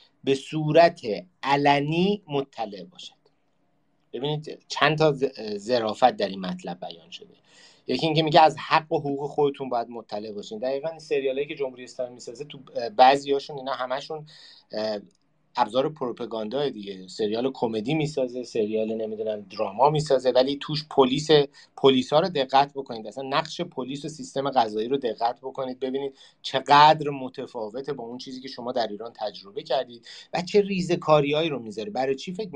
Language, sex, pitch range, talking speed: Persian, male, 125-160 Hz, 150 wpm